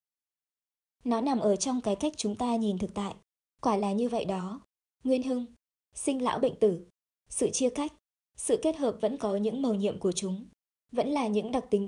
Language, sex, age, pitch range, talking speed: Vietnamese, male, 20-39, 200-255 Hz, 200 wpm